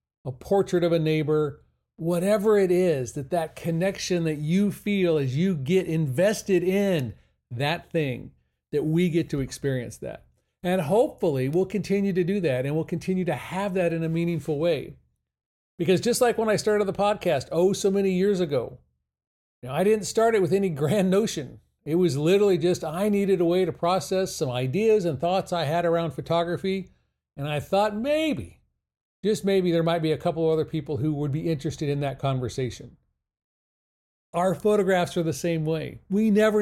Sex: male